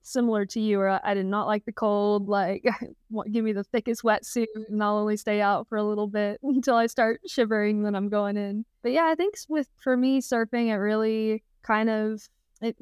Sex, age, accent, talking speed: female, 20-39, American, 215 wpm